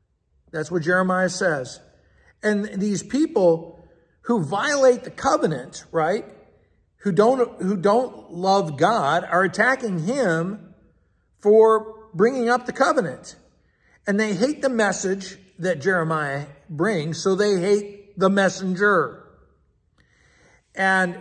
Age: 50-69